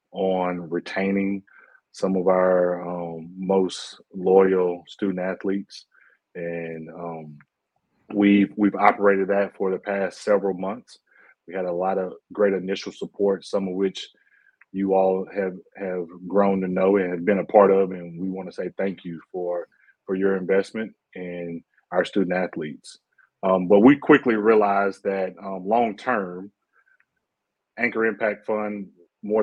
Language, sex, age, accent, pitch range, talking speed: English, male, 30-49, American, 90-100 Hz, 150 wpm